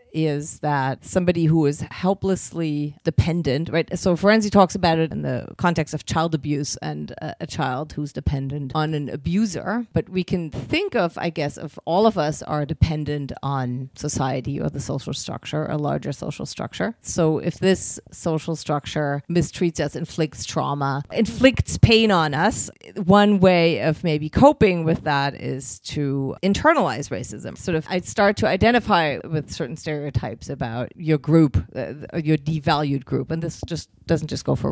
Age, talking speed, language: 30-49, 170 wpm, English